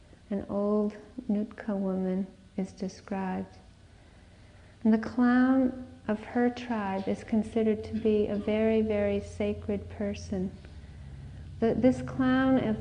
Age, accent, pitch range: 40-59, American, 195-235 Hz